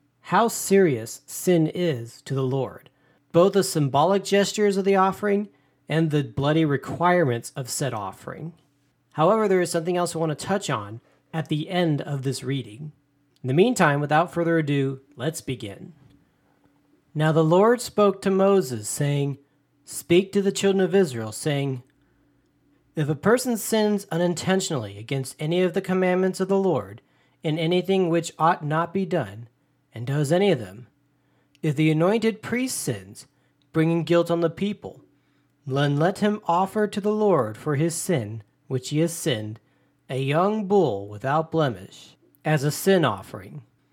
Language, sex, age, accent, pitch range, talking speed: English, male, 40-59, American, 135-185 Hz, 160 wpm